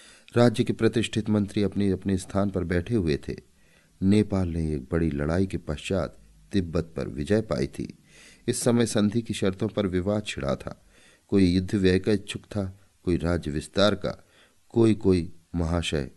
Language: Hindi